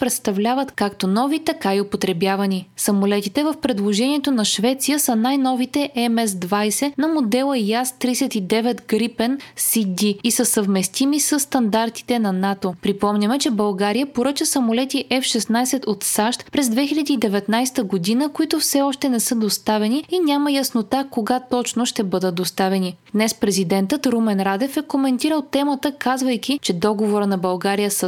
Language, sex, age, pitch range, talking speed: Bulgarian, female, 20-39, 205-275 Hz, 135 wpm